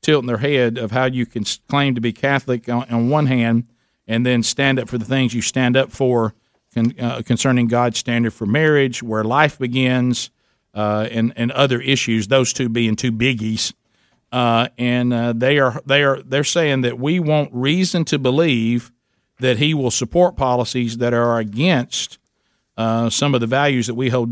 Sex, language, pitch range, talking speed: male, English, 120-145 Hz, 190 wpm